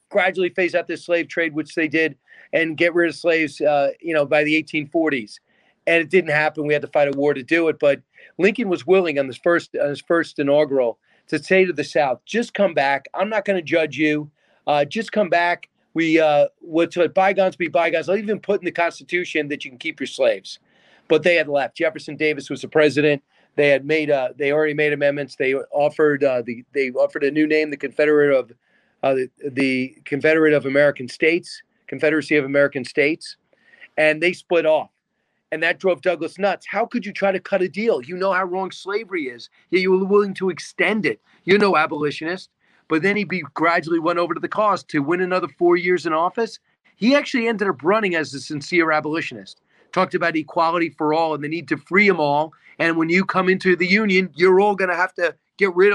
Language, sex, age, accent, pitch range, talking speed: English, male, 40-59, American, 150-185 Hz, 220 wpm